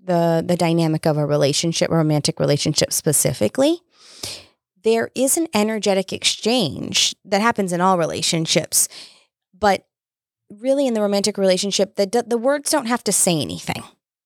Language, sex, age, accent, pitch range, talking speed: English, female, 20-39, American, 170-225 Hz, 145 wpm